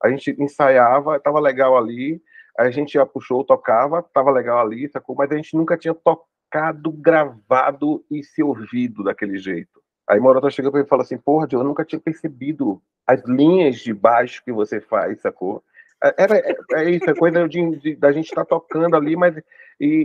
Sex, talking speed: male, 185 wpm